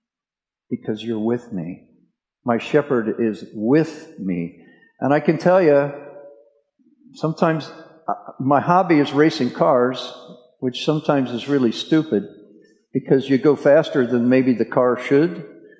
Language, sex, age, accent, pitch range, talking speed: English, male, 50-69, American, 135-190 Hz, 130 wpm